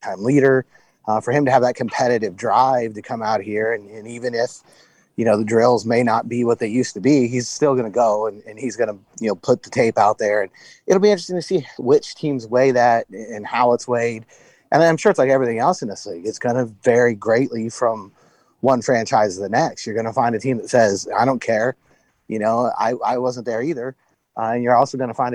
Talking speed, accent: 250 wpm, American